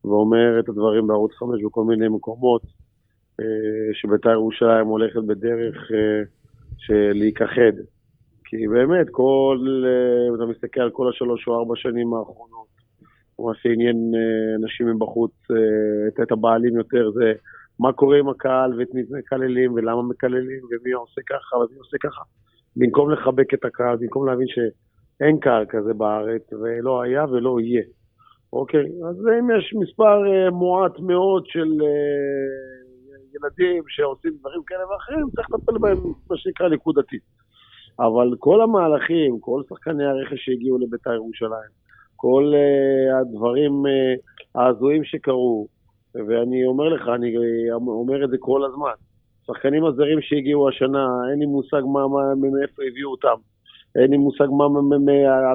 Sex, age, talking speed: male, 40-59, 135 wpm